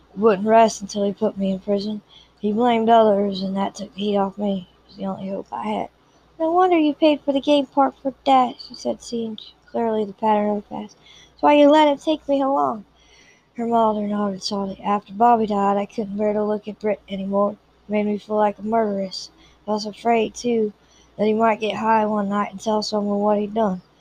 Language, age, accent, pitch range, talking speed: English, 20-39, American, 195-220 Hz, 225 wpm